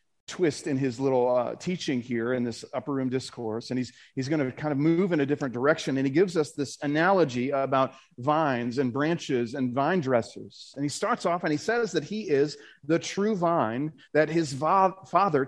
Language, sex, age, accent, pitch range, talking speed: English, male, 40-59, American, 140-180 Hz, 210 wpm